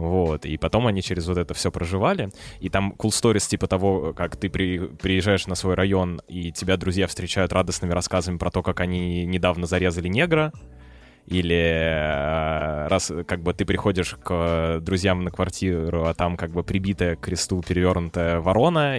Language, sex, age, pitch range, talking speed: Russian, male, 20-39, 85-100 Hz, 170 wpm